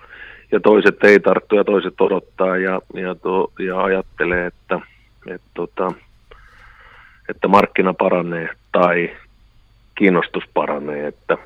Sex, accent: male, native